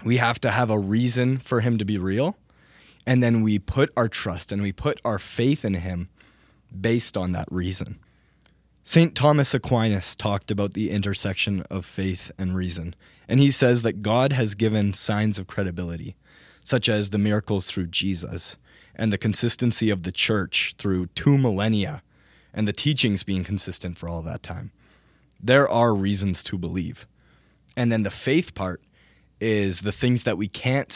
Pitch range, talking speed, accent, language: 95-120 Hz, 175 wpm, American, English